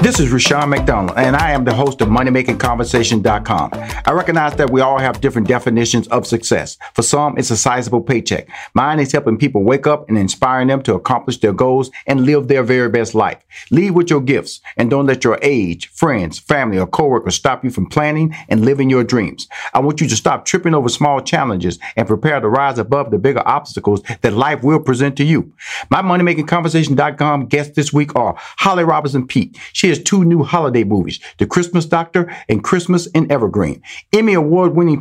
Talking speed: 195 wpm